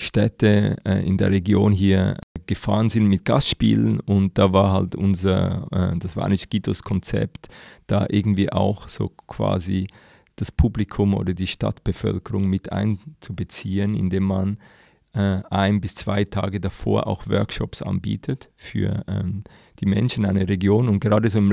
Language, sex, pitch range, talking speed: German, male, 95-110 Hz, 150 wpm